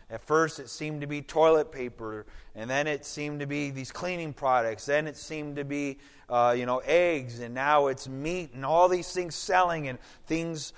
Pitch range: 140-165 Hz